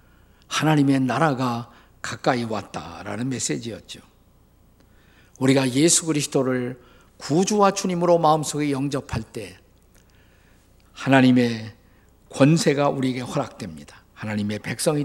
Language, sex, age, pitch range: Korean, male, 50-69, 115-165 Hz